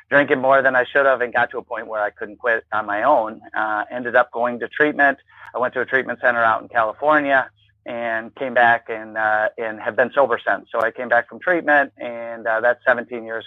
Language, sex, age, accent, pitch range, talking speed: English, male, 40-59, American, 110-135 Hz, 240 wpm